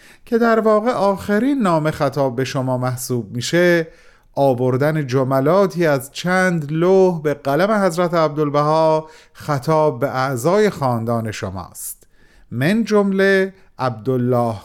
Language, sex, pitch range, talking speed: Persian, male, 130-185 Hz, 110 wpm